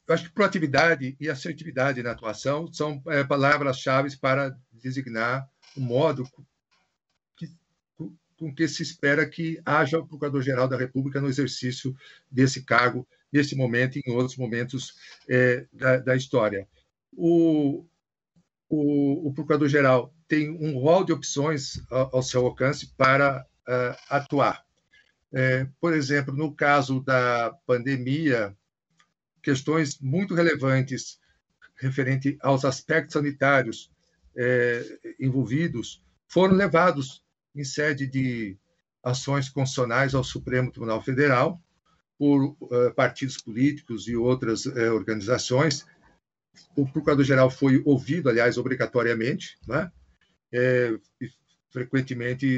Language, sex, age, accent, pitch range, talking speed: Portuguese, male, 60-79, Brazilian, 125-150 Hz, 110 wpm